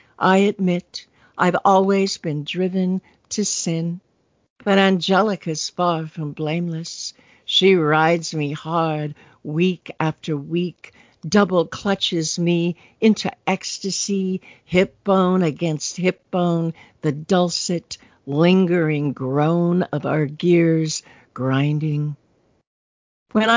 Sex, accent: female, American